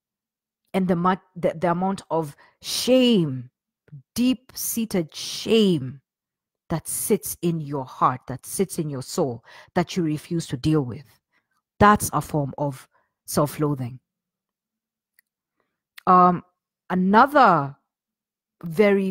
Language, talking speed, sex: English, 105 wpm, female